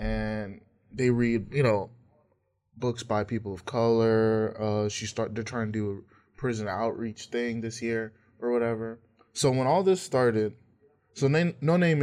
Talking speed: 170 wpm